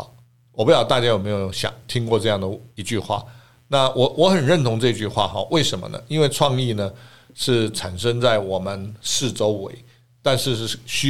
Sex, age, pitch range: male, 50-69, 105-135 Hz